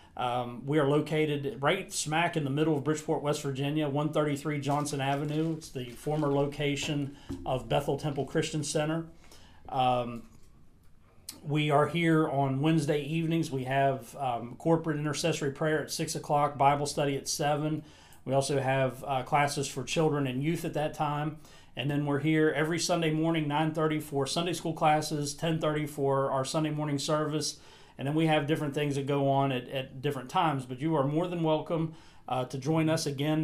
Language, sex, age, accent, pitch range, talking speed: English, male, 40-59, American, 140-160 Hz, 180 wpm